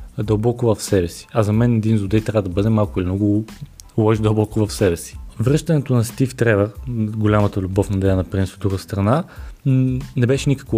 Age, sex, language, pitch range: 20-39, male, Bulgarian, 100-125 Hz